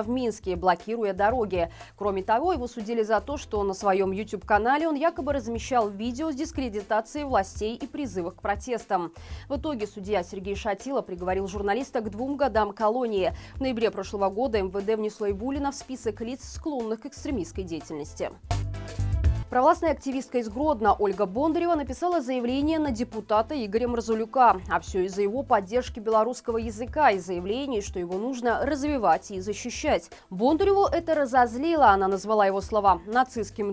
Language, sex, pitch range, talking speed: Russian, female, 205-265 Hz, 150 wpm